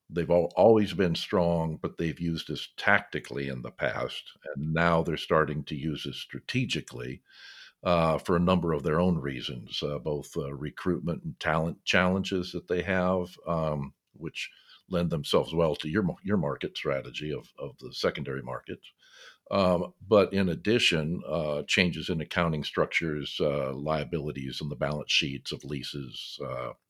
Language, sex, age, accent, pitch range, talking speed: English, male, 50-69, American, 75-100 Hz, 160 wpm